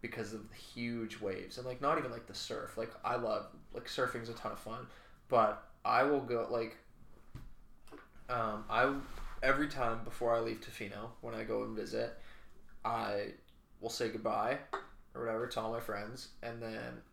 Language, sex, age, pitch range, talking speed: English, male, 20-39, 110-120 Hz, 180 wpm